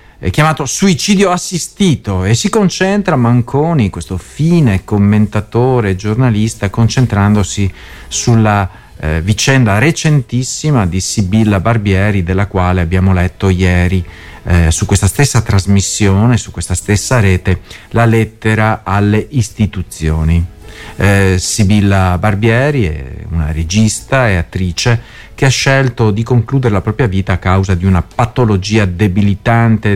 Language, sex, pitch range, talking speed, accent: Italian, male, 100-145 Hz, 120 wpm, native